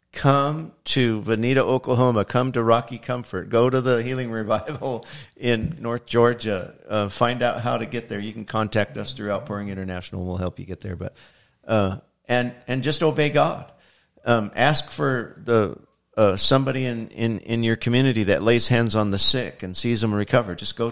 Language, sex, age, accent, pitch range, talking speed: English, male, 50-69, American, 105-125 Hz, 185 wpm